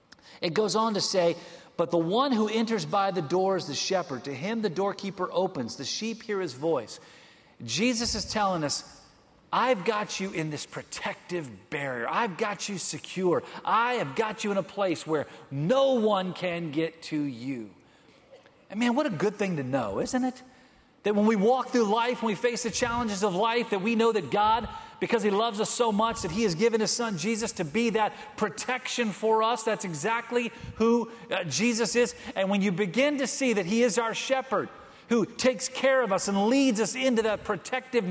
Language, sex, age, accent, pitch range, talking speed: English, male, 40-59, American, 190-235 Hz, 205 wpm